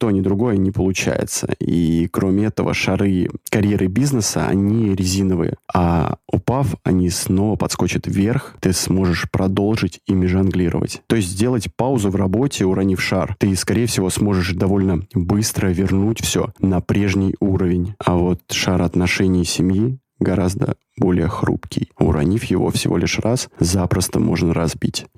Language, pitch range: Russian, 90-105 Hz